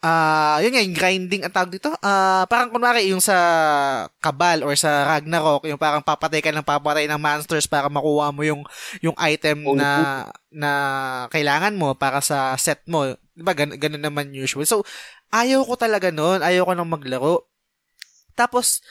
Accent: native